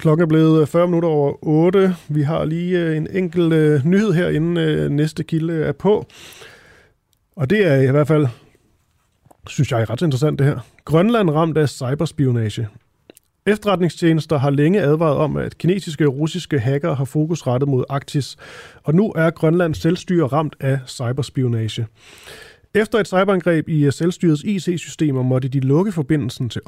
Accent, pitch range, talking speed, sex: native, 135-170 Hz, 155 wpm, male